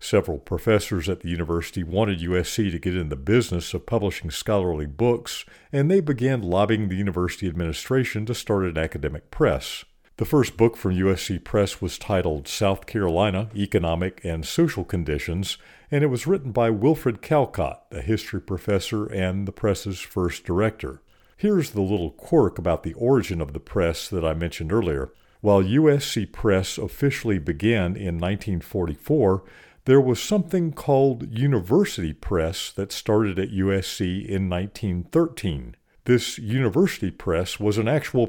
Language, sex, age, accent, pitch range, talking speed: English, male, 50-69, American, 90-120 Hz, 150 wpm